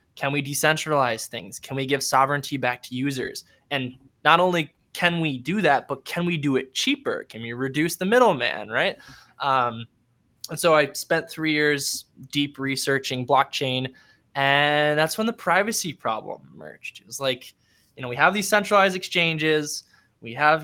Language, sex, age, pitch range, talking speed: English, male, 20-39, 135-165 Hz, 170 wpm